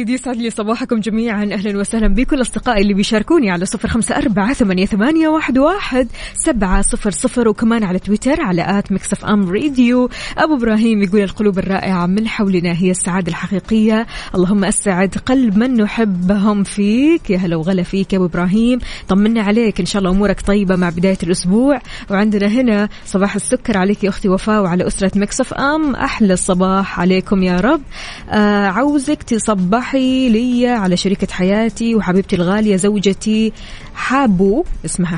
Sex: female